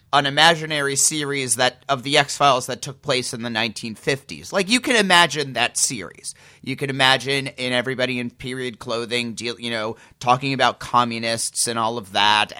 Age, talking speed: 30-49, 175 wpm